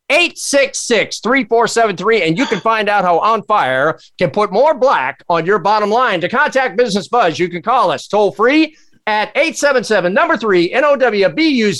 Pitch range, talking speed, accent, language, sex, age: 180-245 Hz, 145 wpm, American, English, male, 50-69